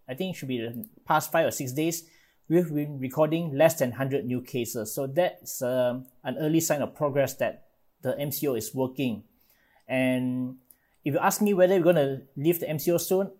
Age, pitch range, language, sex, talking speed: 20-39, 125-165 Hz, English, male, 200 wpm